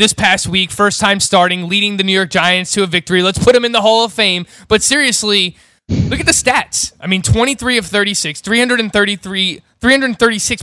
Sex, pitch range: male, 180-225 Hz